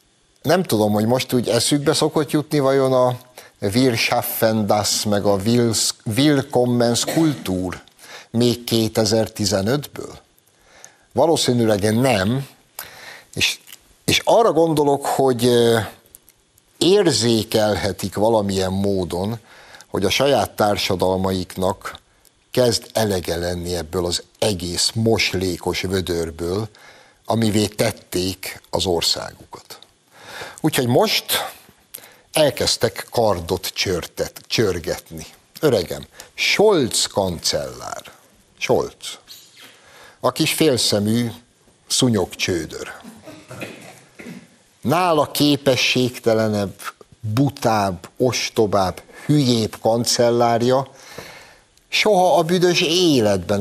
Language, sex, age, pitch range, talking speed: Hungarian, male, 60-79, 100-125 Hz, 75 wpm